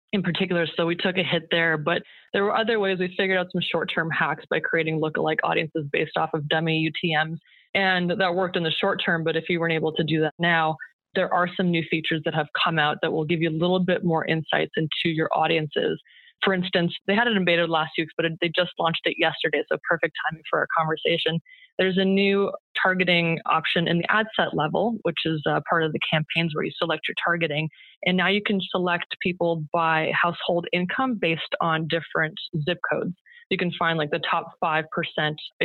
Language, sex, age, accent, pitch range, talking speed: English, female, 20-39, American, 160-190 Hz, 220 wpm